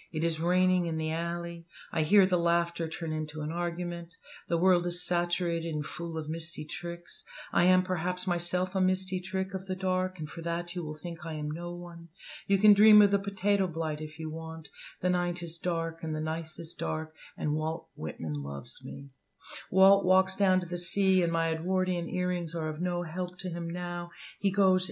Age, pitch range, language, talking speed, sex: 60-79, 165-180 Hz, English, 205 wpm, female